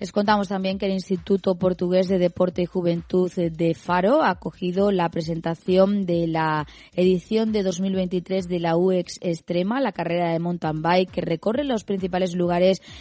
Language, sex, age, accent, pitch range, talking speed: Spanish, female, 20-39, Spanish, 170-195 Hz, 165 wpm